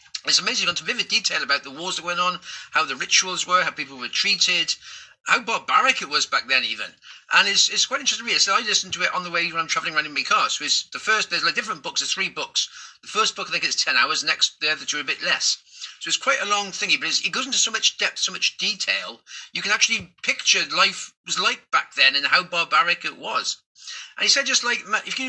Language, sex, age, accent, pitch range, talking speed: English, male, 40-59, British, 185-250 Hz, 275 wpm